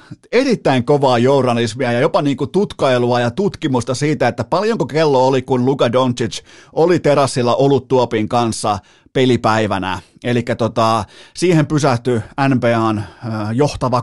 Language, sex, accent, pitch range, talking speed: Finnish, male, native, 120-150 Hz, 125 wpm